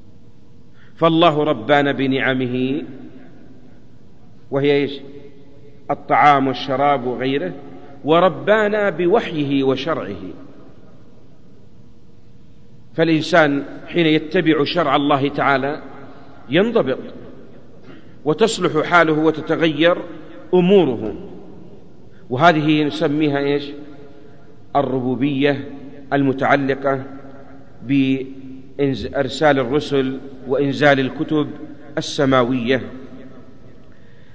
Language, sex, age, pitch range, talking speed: Arabic, male, 50-69, 135-165 Hz, 60 wpm